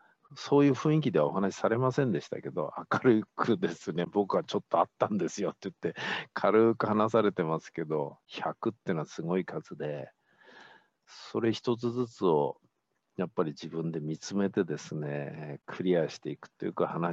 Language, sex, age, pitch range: Japanese, male, 50-69, 85-125 Hz